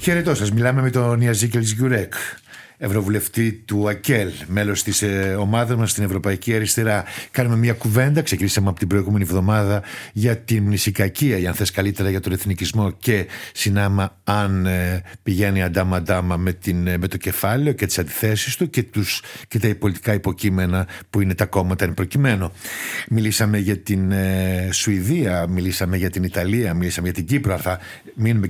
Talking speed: 150 wpm